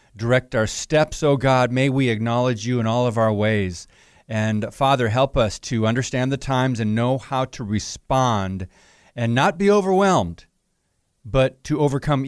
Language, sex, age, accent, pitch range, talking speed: English, male, 40-59, American, 120-155 Hz, 165 wpm